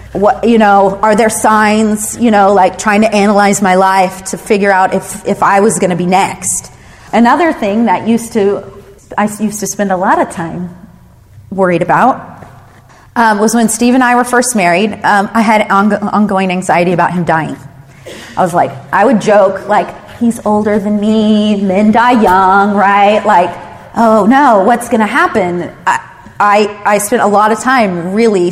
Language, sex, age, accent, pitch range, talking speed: English, female, 30-49, American, 190-230 Hz, 185 wpm